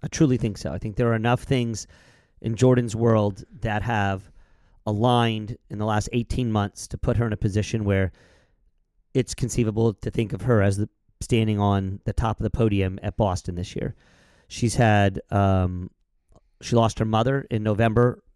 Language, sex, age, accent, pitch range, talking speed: English, male, 40-59, American, 105-125 Hz, 185 wpm